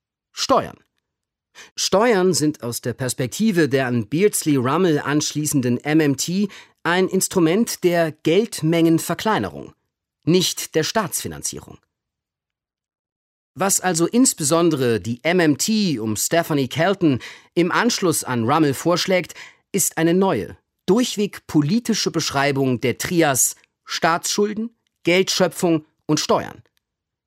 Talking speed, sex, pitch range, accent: 95 wpm, male, 140-190 Hz, German